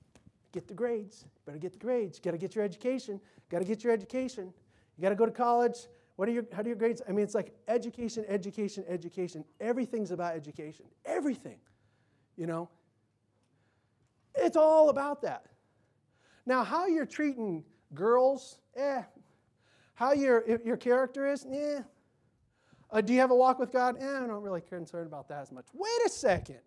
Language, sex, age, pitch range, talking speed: English, male, 30-49, 175-245 Hz, 180 wpm